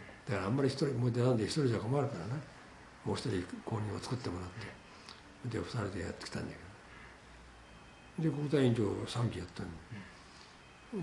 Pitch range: 95-125 Hz